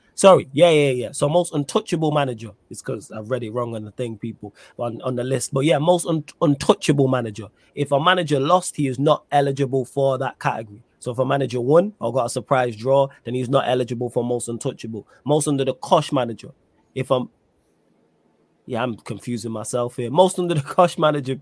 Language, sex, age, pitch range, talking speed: English, male, 20-39, 120-155 Hz, 205 wpm